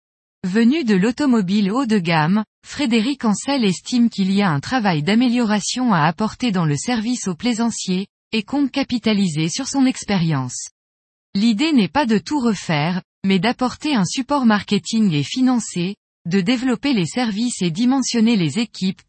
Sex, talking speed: female, 155 wpm